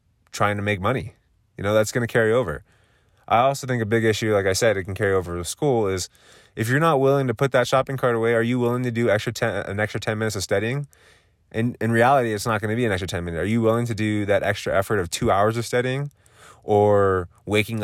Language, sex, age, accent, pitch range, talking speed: English, male, 20-39, American, 95-125 Hz, 260 wpm